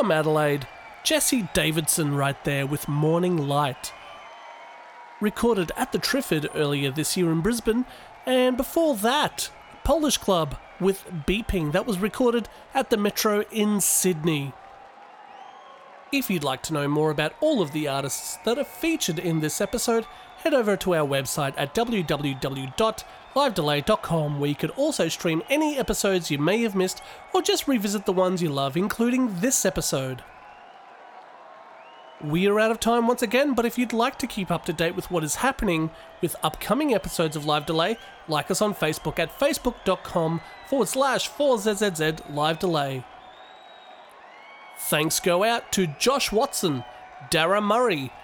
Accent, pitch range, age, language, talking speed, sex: Australian, 155-245 Hz, 30-49, English, 155 wpm, male